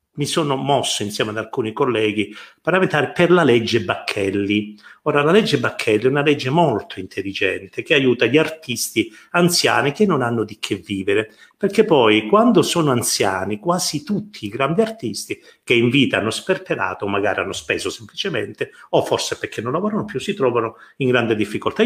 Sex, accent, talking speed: male, native, 170 wpm